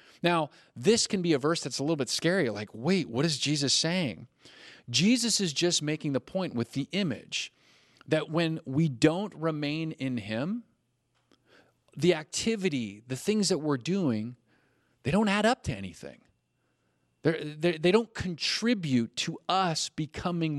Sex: male